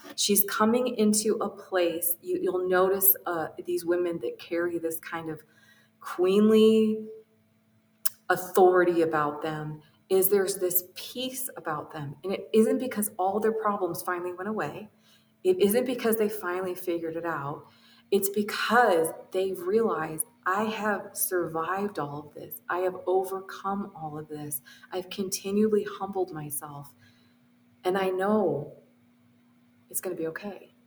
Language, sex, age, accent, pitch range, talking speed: English, female, 30-49, American, 165-205 Hz, 140 wpm